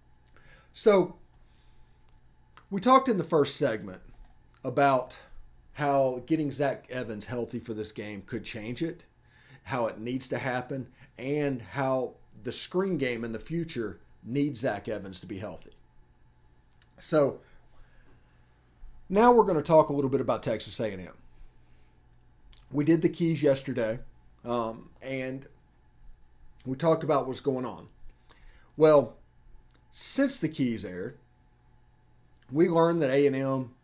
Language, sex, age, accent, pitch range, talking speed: English, male, 40-59, American, 100-145 Hz, 130 wpm